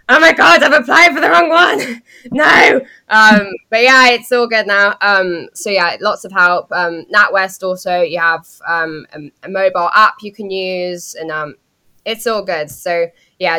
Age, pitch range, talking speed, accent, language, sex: 10-29, 175-225 Hz, 190 wpm, British, English, female